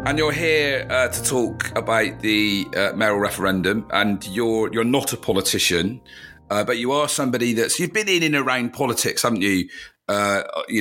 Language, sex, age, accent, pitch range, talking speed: English, male, 40-59, British, 90-115 Hz, 185 wpm